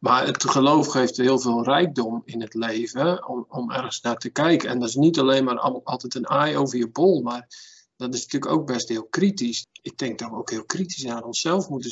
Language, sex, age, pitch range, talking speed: Dutch, male, 50-69, 120-145 Hz, 230 wpm